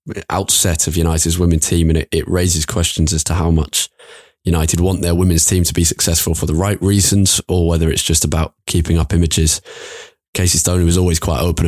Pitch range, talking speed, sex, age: 80-90 Hz, 205 wpm, male, 20-39